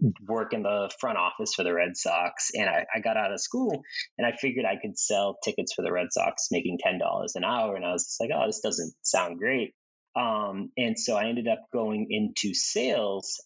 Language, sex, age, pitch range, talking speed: English, male, 30-49, 105-150 Hz, 220 wpm